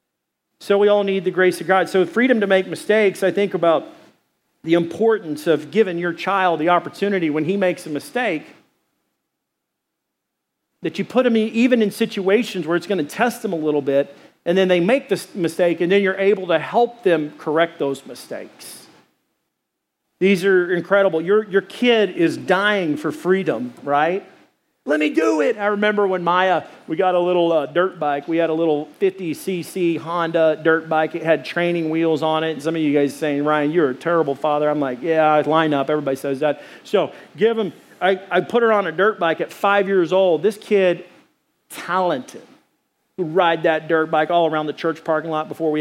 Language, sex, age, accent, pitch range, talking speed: English, male, 40-59, American, 160-200 Hz, 200 wpm